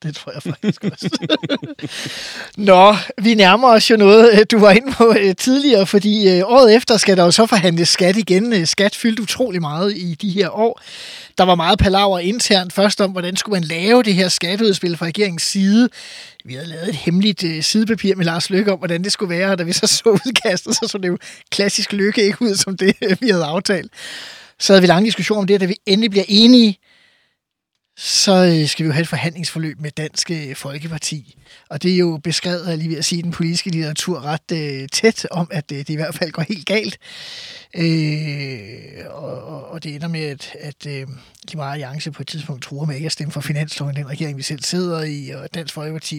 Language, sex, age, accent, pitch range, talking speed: Danish, male, 20-39, native, 155-200 Hz, 205 wpm